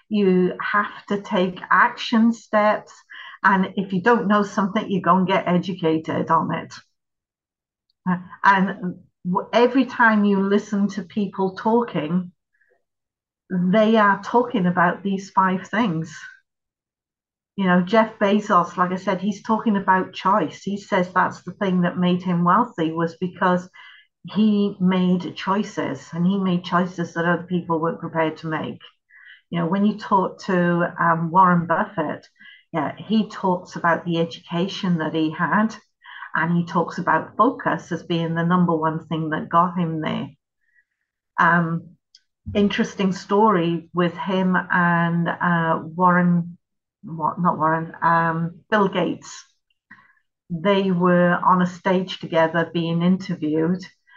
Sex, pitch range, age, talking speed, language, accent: female, 170-200 Hz, 50-69, 140 wpm, English, British